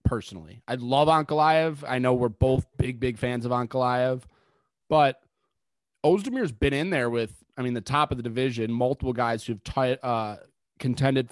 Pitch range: 115-140 Hz